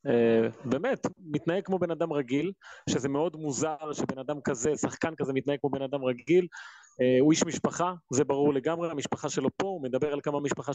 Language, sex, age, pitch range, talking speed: Hebrew, male, 30-49, 140-175 Hz, 195 wpm